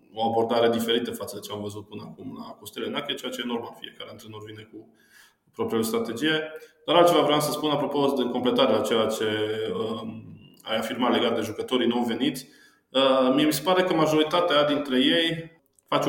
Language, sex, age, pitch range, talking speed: Romanian, male, 20-39, 115-145 Hz, 185 wpm